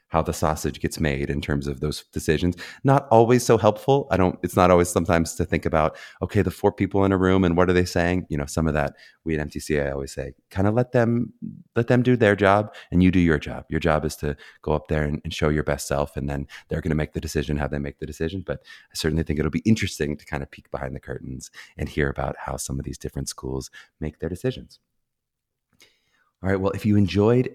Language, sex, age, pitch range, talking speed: English, male, 30-49, 75-110 Hz, 255 wpm